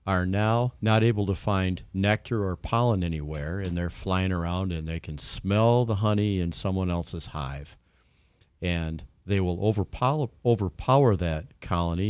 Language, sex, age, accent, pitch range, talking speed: English, male, 40-59, American, 90-110 Hz, 150 wpm